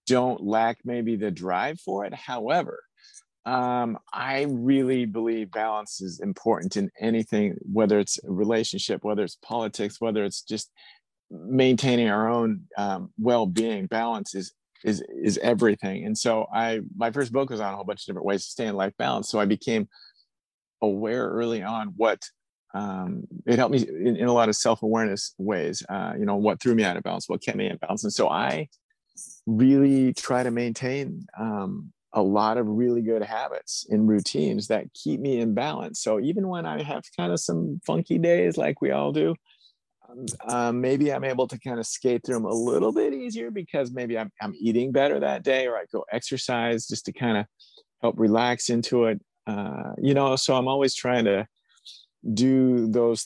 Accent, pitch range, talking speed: American, 110-130 Hz, 190 wpm